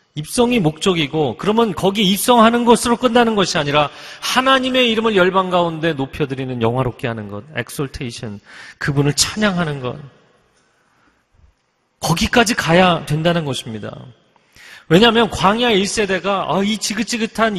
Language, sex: Korean, male